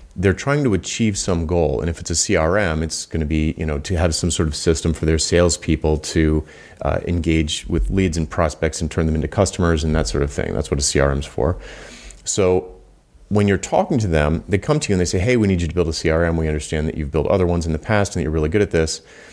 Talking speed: 270 wpm